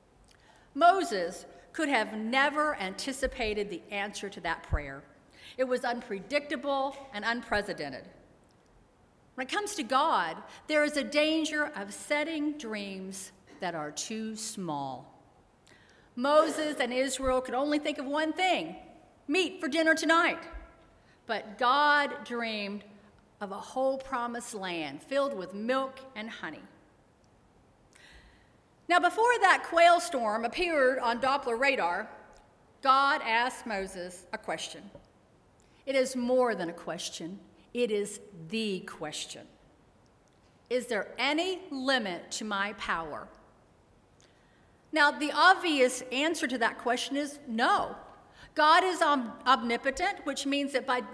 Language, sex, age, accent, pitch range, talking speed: English, female, 50-69, American, 215-300 Hz, 120 wpm